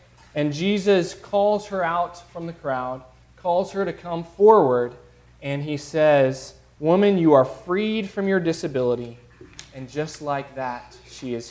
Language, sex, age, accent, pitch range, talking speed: English, male, 20-39, American, 130-170 Hz, 150 wpm